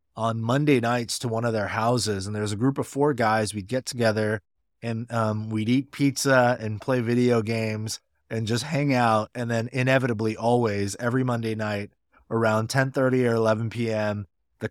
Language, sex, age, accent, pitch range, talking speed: English, male, 30-49, American, 105-125 Hz, 190 wpm